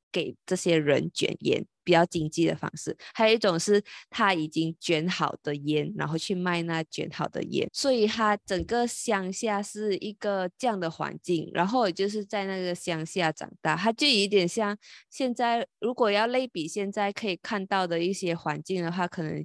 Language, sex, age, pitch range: Chinese, female, 20-39, 165-210 Hz